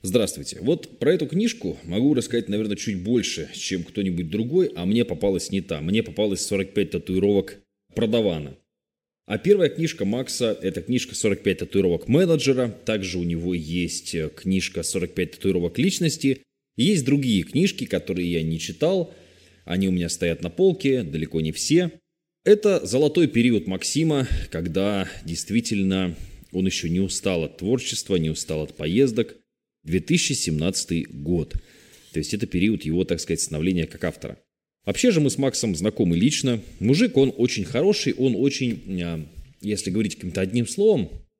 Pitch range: 90-135 Hz